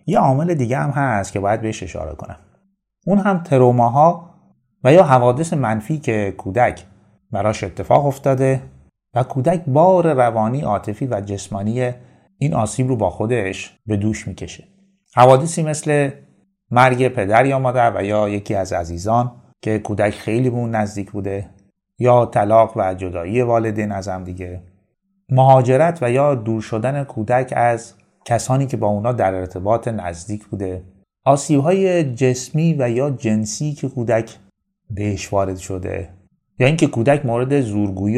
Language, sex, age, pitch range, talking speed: Persian, male, 30-49, 100-130 Hz, 145 wpm